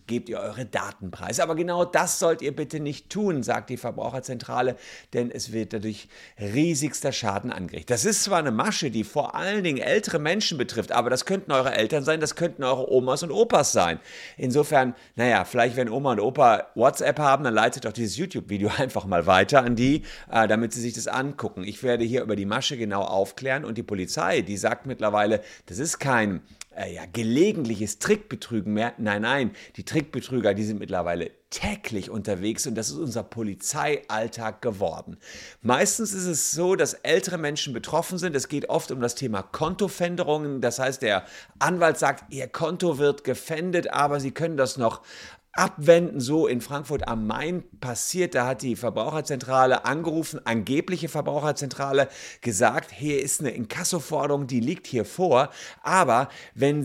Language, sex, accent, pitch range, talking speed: German, male, German, 115-155 Hz, 170 wpm